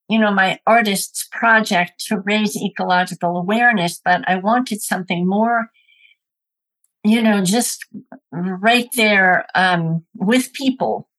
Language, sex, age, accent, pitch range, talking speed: English, female, 60-79, American, 175-220 Hz, 120 wpm